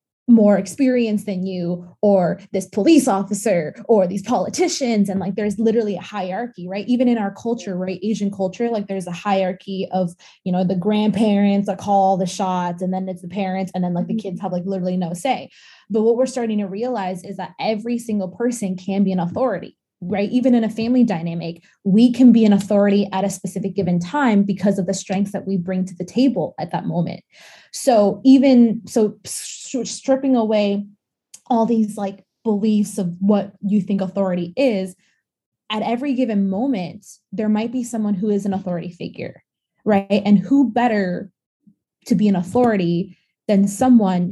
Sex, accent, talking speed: female, American, 185 wpm